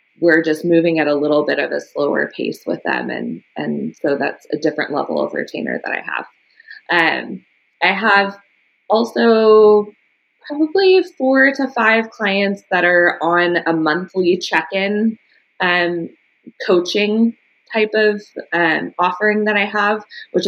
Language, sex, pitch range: English, female, 165-220 Hz